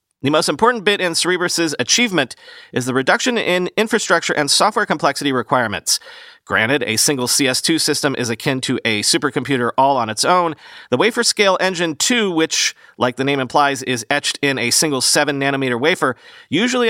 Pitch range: 135-195 Hz